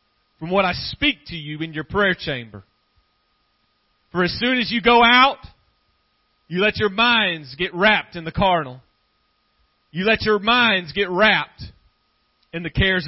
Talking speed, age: 160 wpm, 40-59